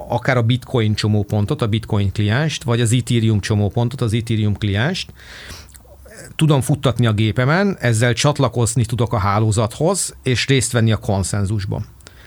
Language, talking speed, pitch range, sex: Hungarian, 135 wpm, 110-130 Hz, male